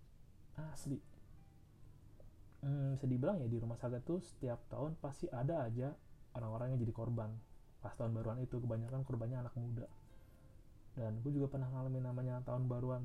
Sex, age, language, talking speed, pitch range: male, 30-49, Indonesian, 155 wpm, 110-140 Hz